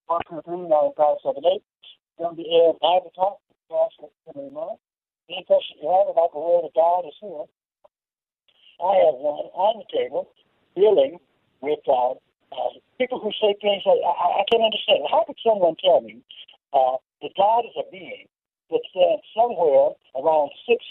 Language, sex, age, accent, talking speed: English, male, 50-69, American, 105 wpm